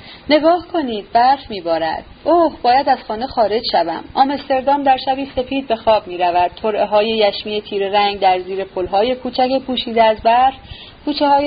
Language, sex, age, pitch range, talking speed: Persian, female, 30-49, 205-285 Hz, 165 wpm